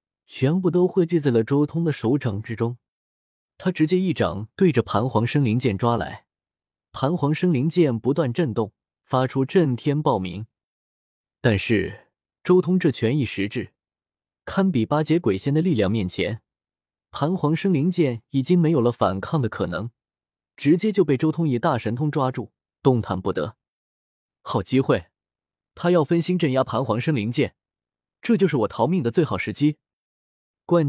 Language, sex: Chinese, male